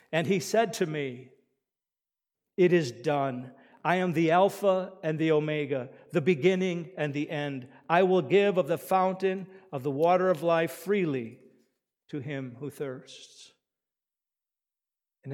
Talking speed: 145 wpm